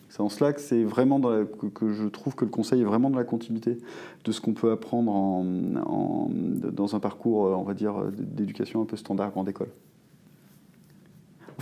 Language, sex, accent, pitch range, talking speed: French, male, French, 115-145 Hz, 210 wpm